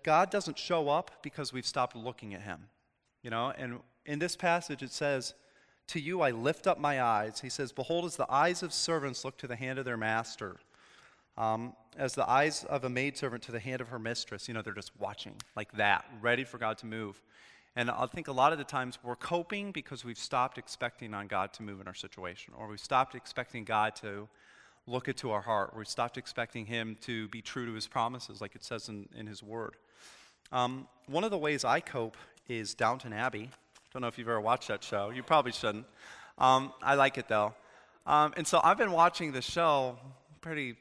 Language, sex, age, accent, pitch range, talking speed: English, male, 30-49, American, 110-140 Hz, 220 wpm